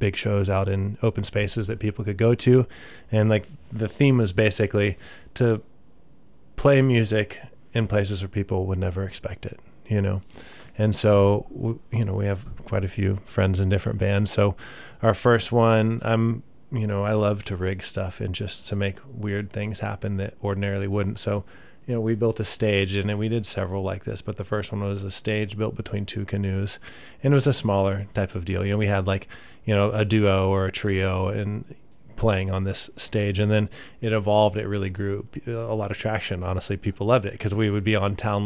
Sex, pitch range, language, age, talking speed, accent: male, 100-110 Hz, English, 30-49, 210 wpm, American